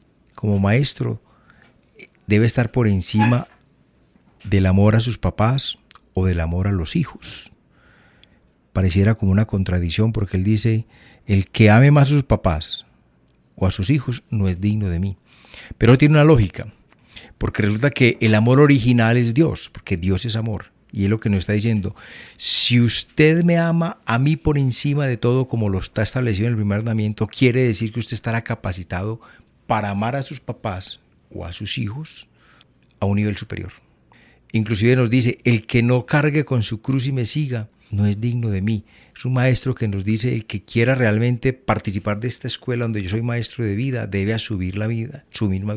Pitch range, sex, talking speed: 100-125 Hz, male, 190 wpm